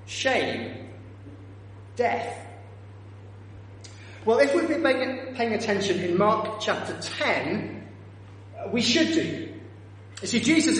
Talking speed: 100 wpm